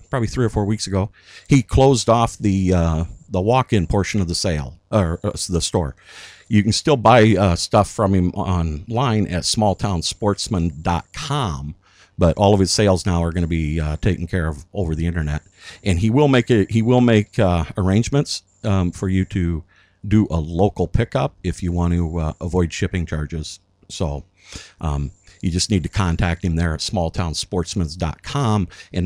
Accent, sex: American, male